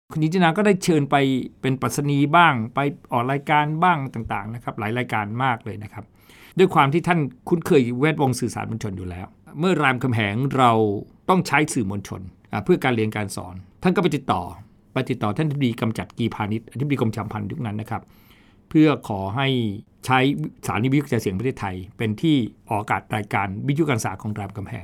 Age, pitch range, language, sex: 60-79, 110-150 Hz, Thai, male